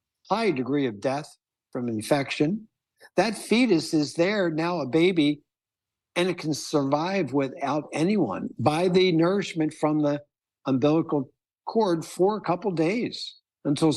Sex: male